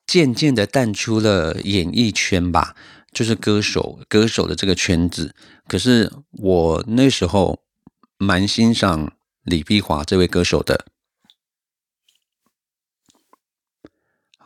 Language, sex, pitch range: Chinese, male, 85-115 Hz